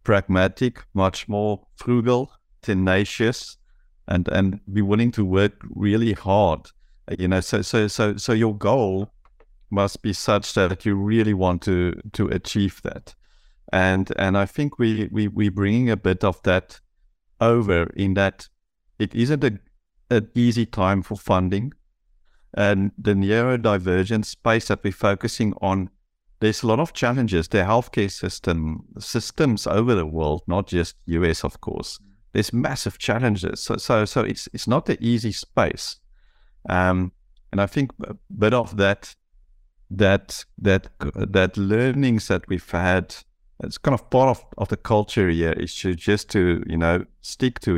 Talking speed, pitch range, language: 155 wpm, 90-110 Hz, English